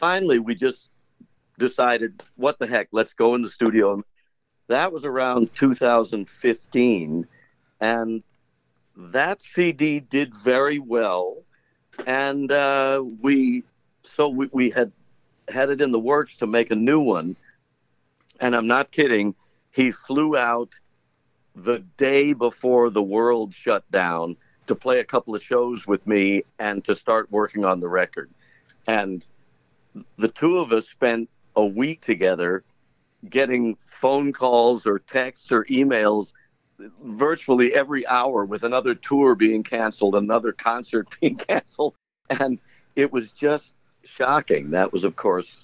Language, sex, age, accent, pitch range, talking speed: English, male, 60-79, American, 110-135 Hz, 135 wpm